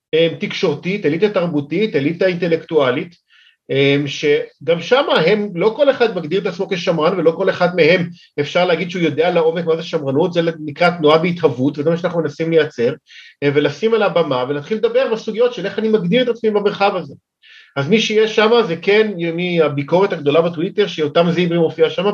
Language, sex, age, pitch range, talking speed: Hebrew, male, 40-59, 145-180 Hz, 170 wpm